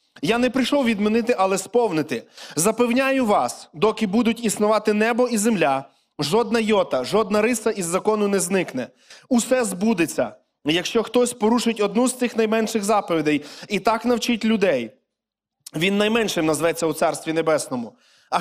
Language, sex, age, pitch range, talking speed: Ukrainian, male, 20-39, 195-235 Hz, 140 wpm